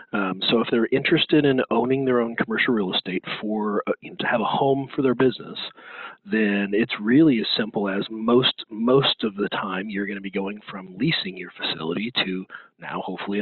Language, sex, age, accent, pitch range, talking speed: English, male, 40-59, American, 100-135 Hz, 200 wpm